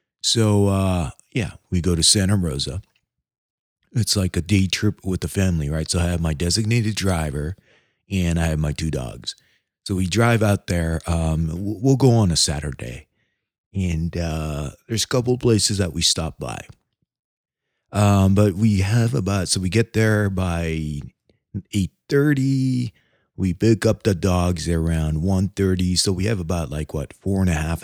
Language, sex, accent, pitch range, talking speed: English, male, American, 80-105 Hz, 175 wpm